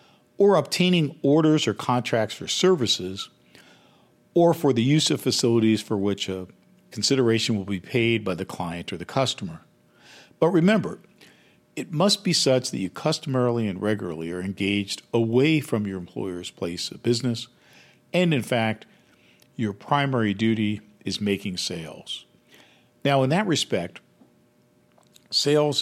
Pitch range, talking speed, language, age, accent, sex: 100-140 Hz, 140 wpm, English, 50-69, American, male